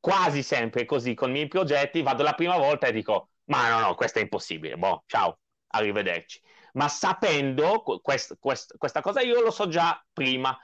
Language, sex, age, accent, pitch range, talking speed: Italian, male, 30-49, native, 135-190 Hz, 185 wpm